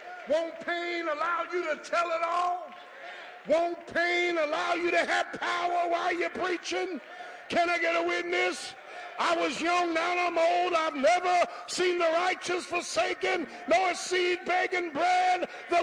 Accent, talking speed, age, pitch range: American, 150 wpm, 50-69, 335-380 Hz